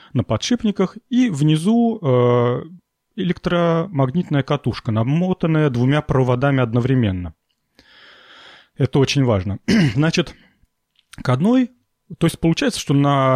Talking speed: 100 wpm